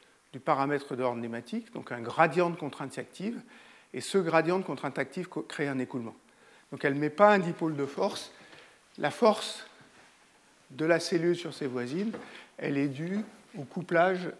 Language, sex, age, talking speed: French, male, 50-69, 165 wpm